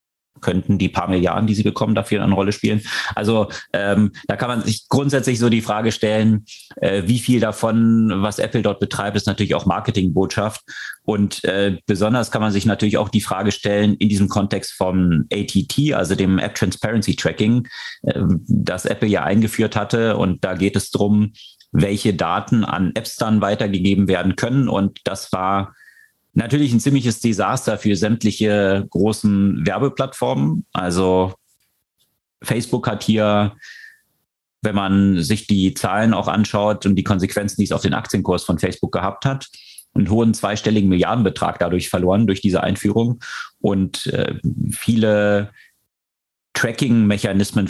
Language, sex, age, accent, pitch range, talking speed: German, male, 30-49, German, 95-110 Hz, 150 wpm